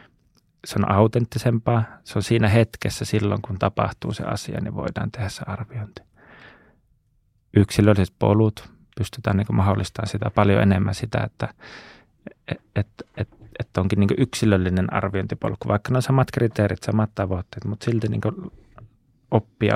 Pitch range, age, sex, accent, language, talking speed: 100-115 Hz, 30-49, male, native, Finnish, 120 wpm